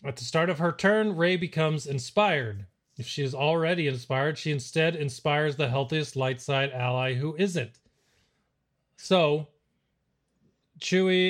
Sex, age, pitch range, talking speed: male, 30-49, 130-160 Hz, 140 wpm